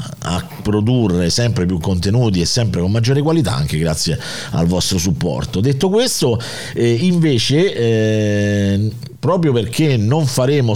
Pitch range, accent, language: 90-125 Hz, native, Italian